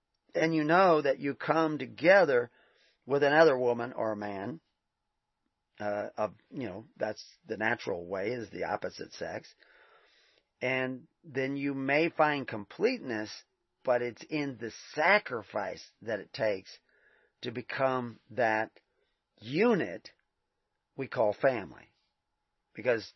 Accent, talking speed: American, 120 wpm